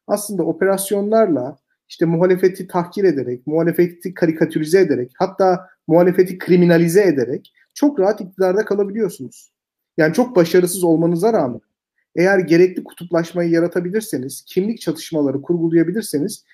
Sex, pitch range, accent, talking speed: male, 155-205 Hz, native, 105 wpm